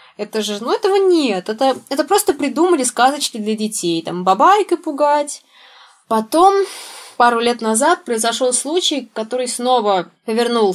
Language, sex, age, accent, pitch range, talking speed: Russian, female, 20-39, native, 205-285 Hz, 135 wpm